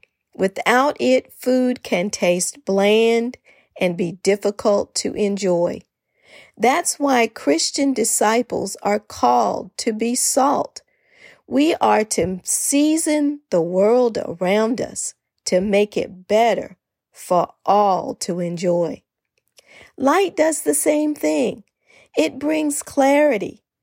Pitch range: 195-280 Hz